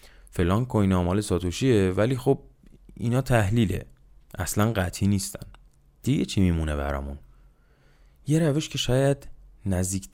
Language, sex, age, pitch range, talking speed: Persian, male, 20-39, 80-110 Hz, 120 wpm